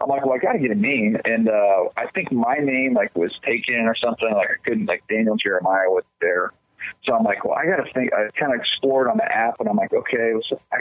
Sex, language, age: male, English, 40-59